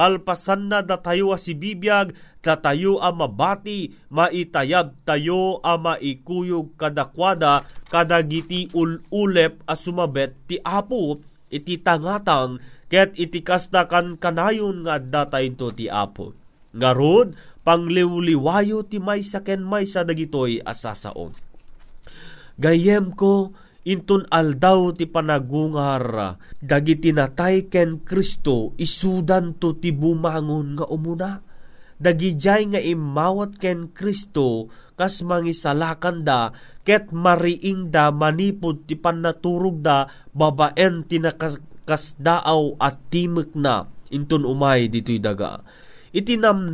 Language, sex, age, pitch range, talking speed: Filipino, male, 30-49, 145-185 Hz, 100 wpm